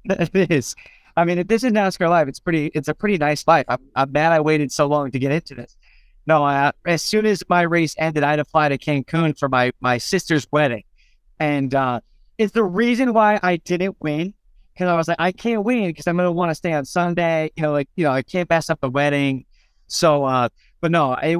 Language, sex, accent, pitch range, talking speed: English, male, American, 145-180 Hz, 240 wpm